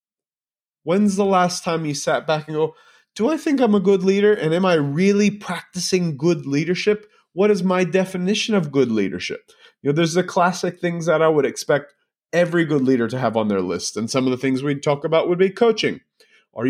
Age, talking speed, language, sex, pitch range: 30-49, 215 wpm, English, male, 135-195 Hz